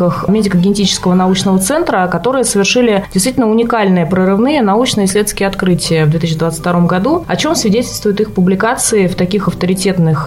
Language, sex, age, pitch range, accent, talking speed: Russian, female, 20-39, 180-230 Hz, native, 125 wpm